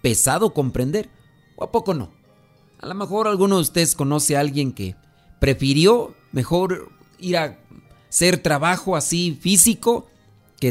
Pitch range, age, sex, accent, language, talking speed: 130-170 Hz, 40-59, male, Mexican, Spanish, 140 wpm